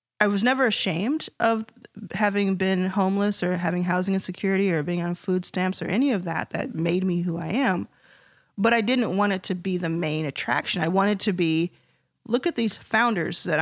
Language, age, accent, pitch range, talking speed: English, 30-49, American, 170-210 Hz, 205 wpm